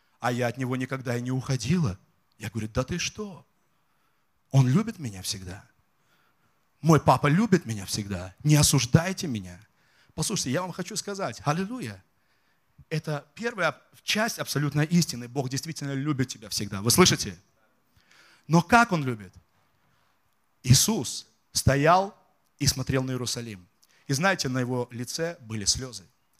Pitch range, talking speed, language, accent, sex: 125-185 Hz, 135 wpm, Russian, native, male